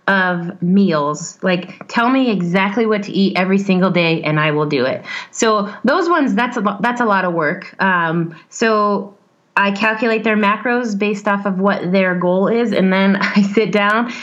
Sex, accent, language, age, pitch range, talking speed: female, American, English, 20-39, 180-215 Hz, 185 wpm